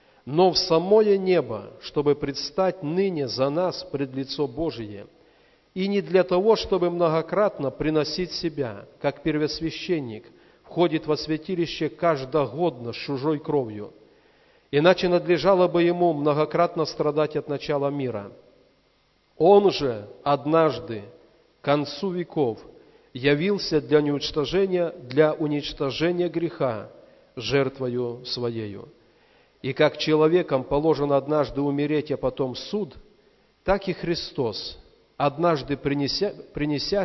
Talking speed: 110 wpm